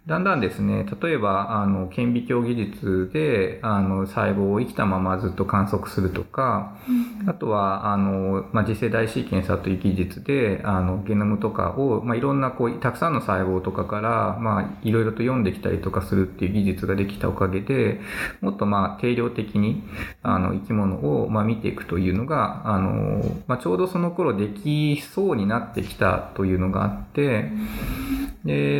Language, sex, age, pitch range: Japanese, male, 20-39, 95-130 Hz